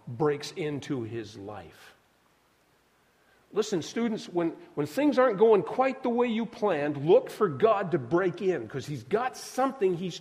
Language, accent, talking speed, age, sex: English, American, 160 wpm, 50-69, male